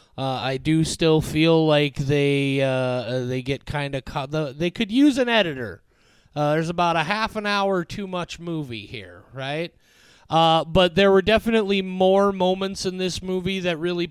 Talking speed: 185 wpm